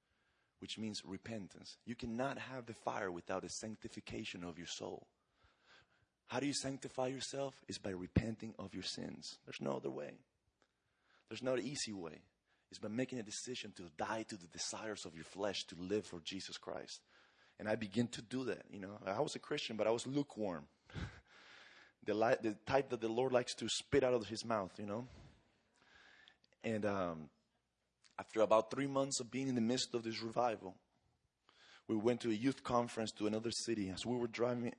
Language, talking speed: English, 190 wpm